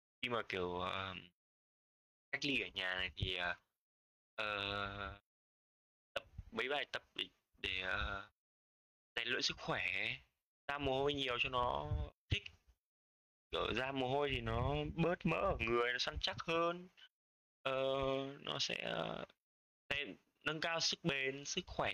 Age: 20-39